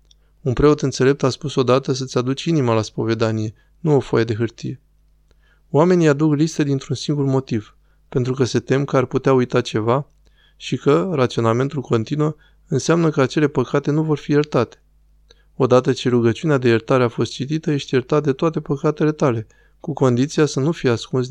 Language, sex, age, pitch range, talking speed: Romanian, male, 20-39, 120-150 Hz, 175 wpm